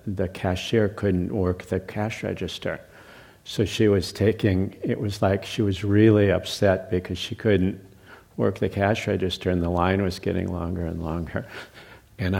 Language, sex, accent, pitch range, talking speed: English, male, American, 90-105 Hz, 165 wpm